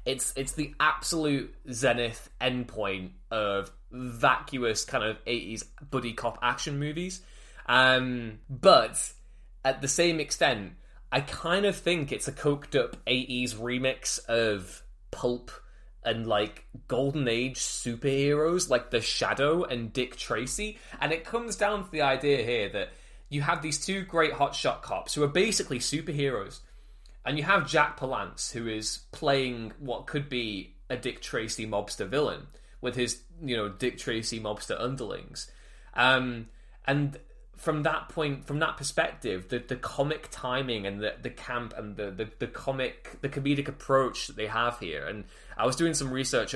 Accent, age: British, 10-29